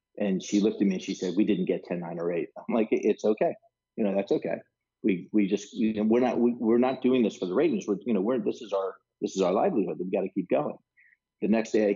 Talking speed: 285 wpm